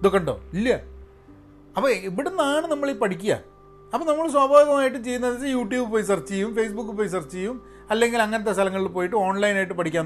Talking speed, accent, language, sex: 160 wpm, native, Malayalam, male